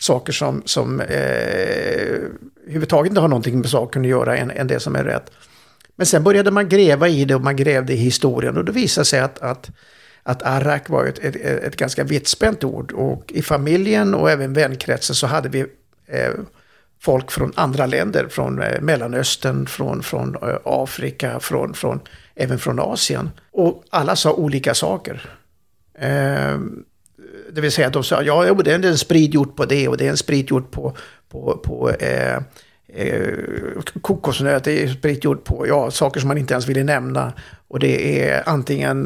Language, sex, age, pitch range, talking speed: Swedish, male, 60-79, 130-170 Hz, 185 wpm